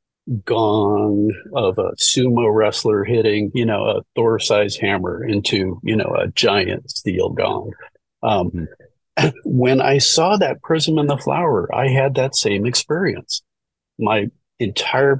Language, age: English, 50-69